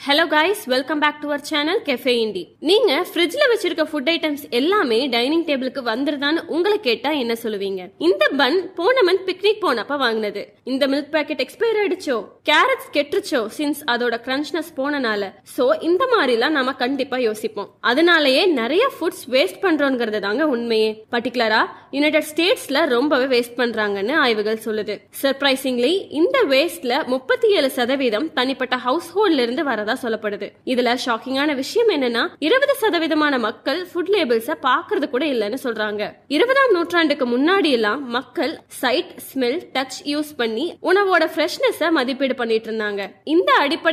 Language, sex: Tamil, female